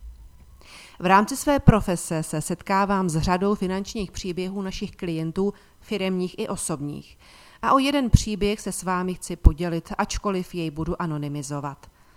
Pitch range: 165-210 Hz